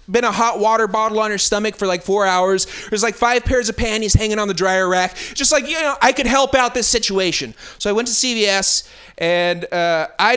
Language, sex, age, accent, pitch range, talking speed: English, male, 30-49, American, 180-240 Hz, 235 wpm